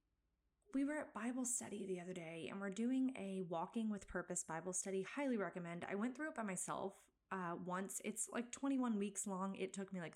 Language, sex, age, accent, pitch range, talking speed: English, female, 20-39, American, 180-215 Hz, 215 wpm